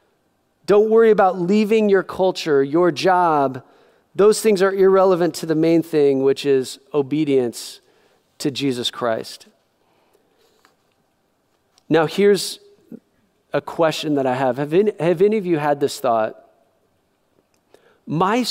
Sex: male